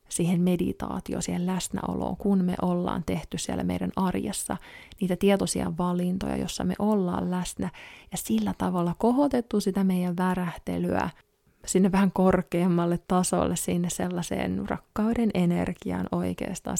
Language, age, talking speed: Finnish, 20-39, 120 wpm